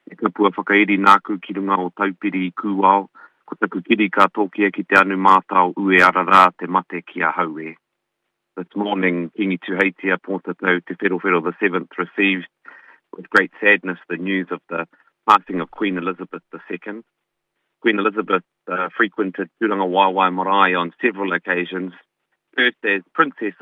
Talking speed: 90 wpm